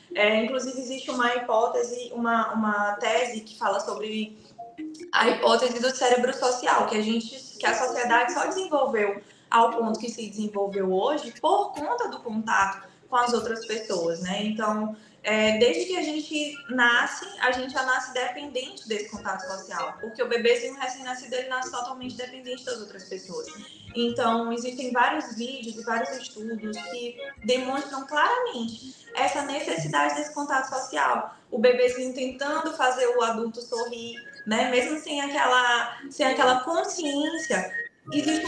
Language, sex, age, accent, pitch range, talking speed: Portuguese, female, 20-39, Brazilian, 220-280 Hz, 145 wpm